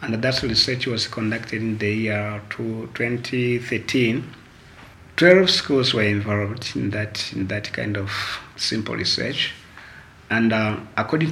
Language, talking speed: Finnish, 135 wpm